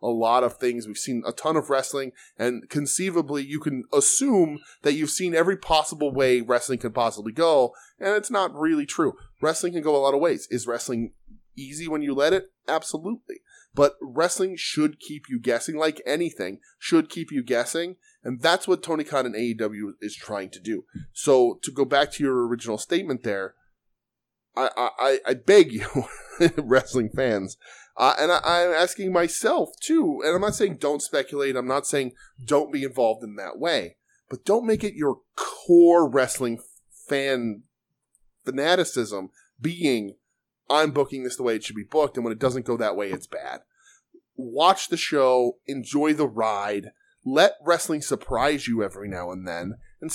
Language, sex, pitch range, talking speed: English, male, 125-170 Hz, 175 wpm